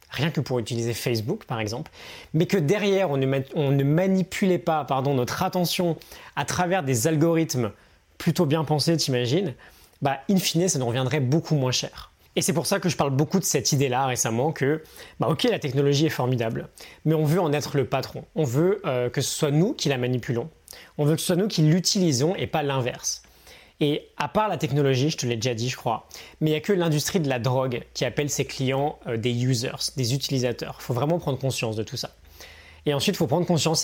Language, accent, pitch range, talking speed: French, French, 130-170 Hz, 225 wpm